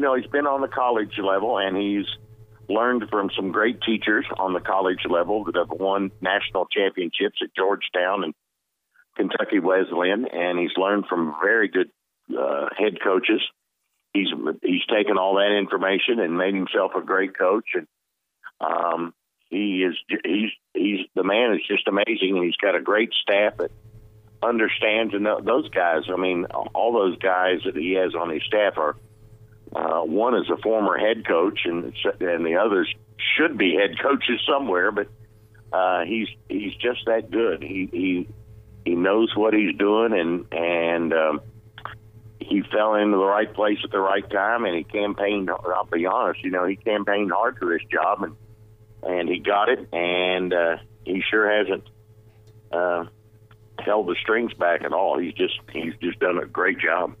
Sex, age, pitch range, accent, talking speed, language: male, 50-69, 90-110 Hz, American, 170 wpm, English